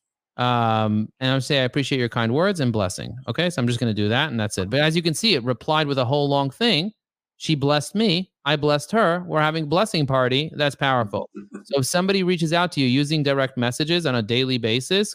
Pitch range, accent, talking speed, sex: 120-160 Hz, American, 240 wpm, male